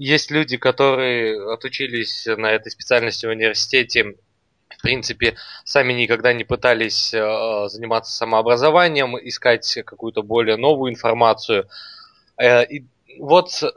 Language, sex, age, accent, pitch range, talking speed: Russian, male, 20-39, native, 115-155 Hz, 100 wpm